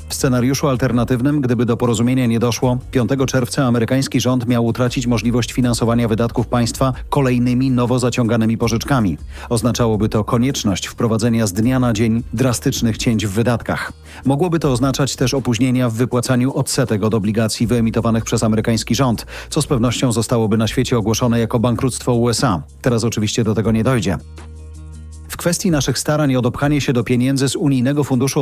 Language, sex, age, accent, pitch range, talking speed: Polish, male, 40-59, native, 115-135 Hz, 160 wpm